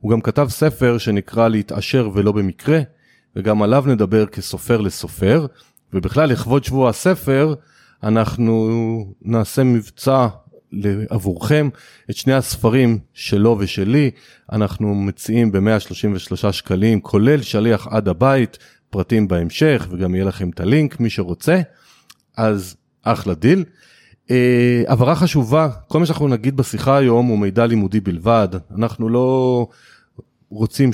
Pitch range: 105-135 Hz